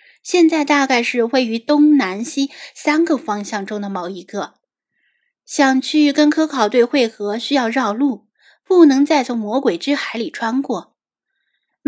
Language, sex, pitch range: Chinese, female, 215-295 Hz